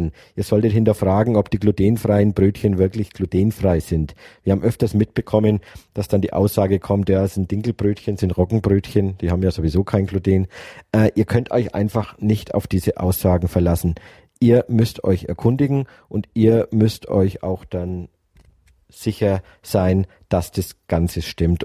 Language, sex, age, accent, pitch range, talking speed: German, male, 50-69, German, 90-110 Hz, 160 wpm